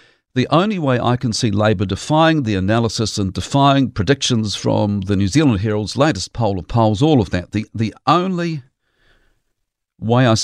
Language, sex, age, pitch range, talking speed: English, male, 50-69, 105-135 Hz, 170 wpm